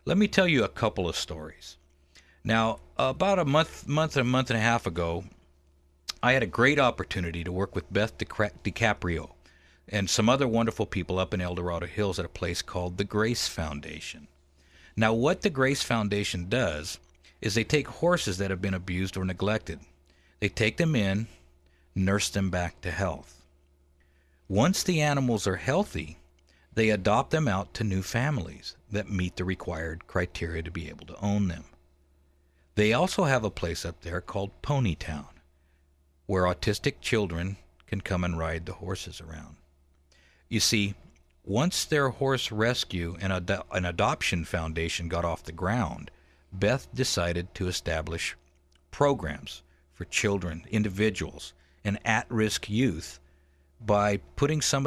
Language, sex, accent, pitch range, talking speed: English, male, American, 75-110 Hz, 155 wpm